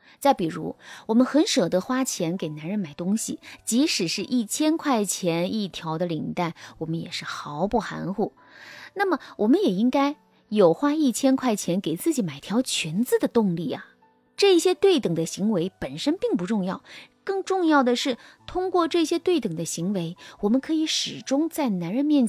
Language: Chinese